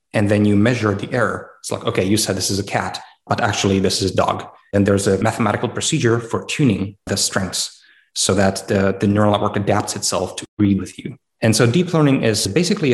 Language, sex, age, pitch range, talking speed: English, male, 20-39, 100-115 Hz, 225 wpm